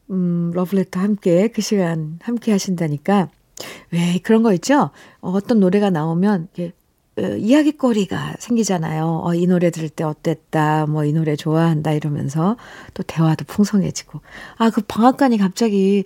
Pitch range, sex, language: 170-230 Hz, female, Korean